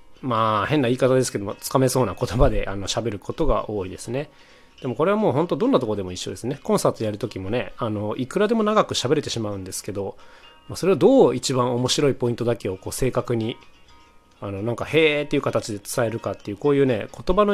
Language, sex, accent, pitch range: Japanese, male, native, 105-150 Hz